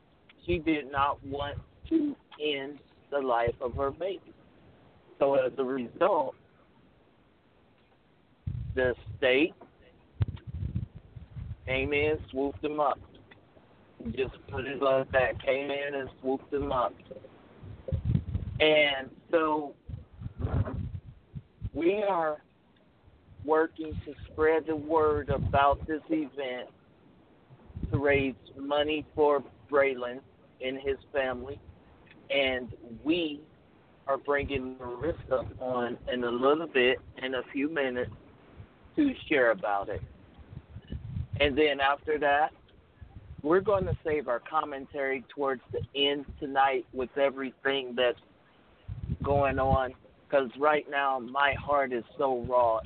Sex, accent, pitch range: male, American, 120-145 Hz